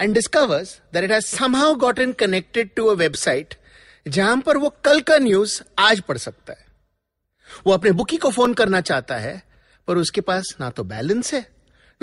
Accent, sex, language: Indian, male, English